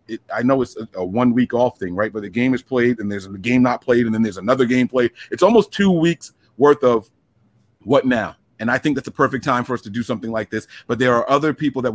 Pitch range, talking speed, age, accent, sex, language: 110-140 Hz, 270 wpm, 30-49, American, male, English